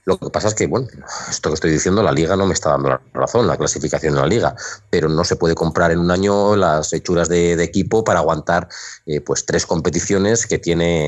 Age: 30-49